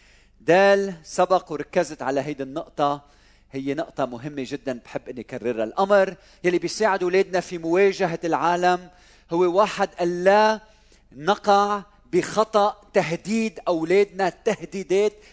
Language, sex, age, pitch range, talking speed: Arabic, male, 40-59, 135-195 Hz, 110 wpm